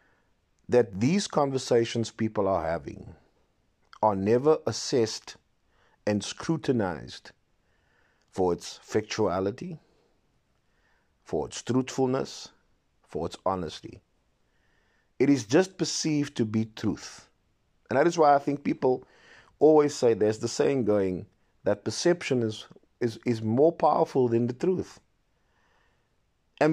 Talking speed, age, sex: 115 wpm, 50-69, male